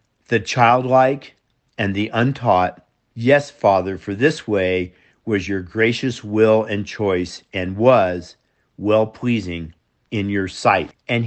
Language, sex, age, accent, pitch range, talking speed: English, male, 50-69, American, 100-130 Hz, 120 wpm